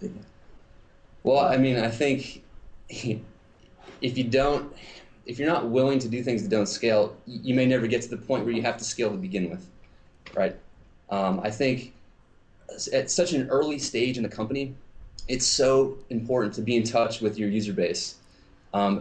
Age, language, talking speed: 30-49, English, 180 wpm